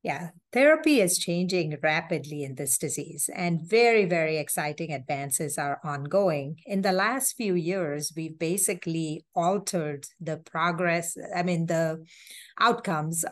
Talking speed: 130 wpm